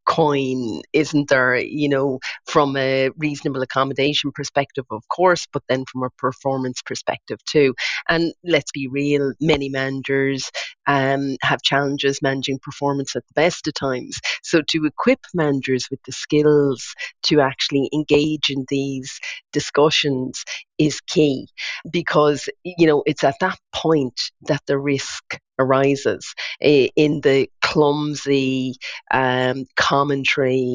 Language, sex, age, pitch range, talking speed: English, female, 30-49, 130-150 Hz, 130 wpm